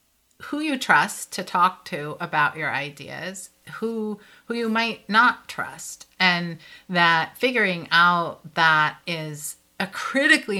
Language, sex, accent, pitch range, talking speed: English, female, American, 160-185 Hz, 130 wpm